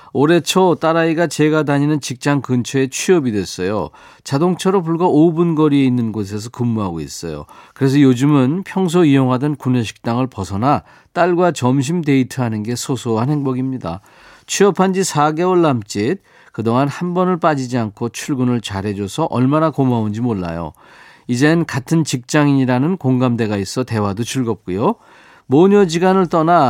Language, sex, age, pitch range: Korean, male, 40-59, 120-160 Hz